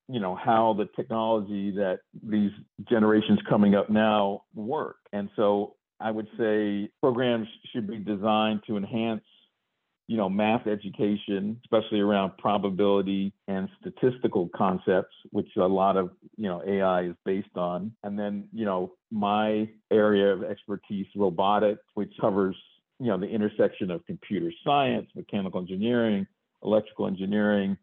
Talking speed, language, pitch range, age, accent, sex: 140 wpm, English, 95-110 Hz, 50-69, American, male